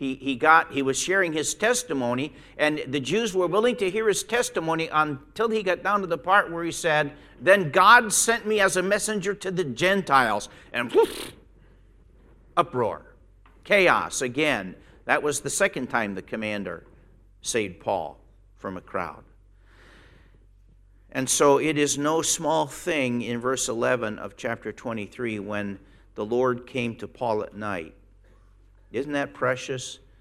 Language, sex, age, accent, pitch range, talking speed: English, male, 50-69, American, 95-140 Hz, 150 wpm